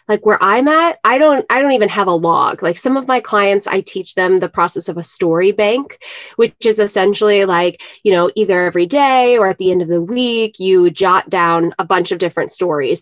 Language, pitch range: English, 180-225 Hz